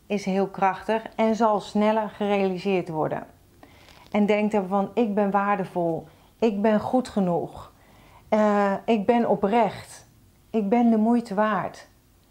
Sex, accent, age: female, Dutch, 40-59